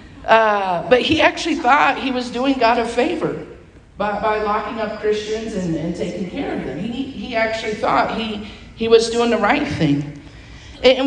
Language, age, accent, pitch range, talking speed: English, 50-69, American, 160-240 Hz, 185 wpm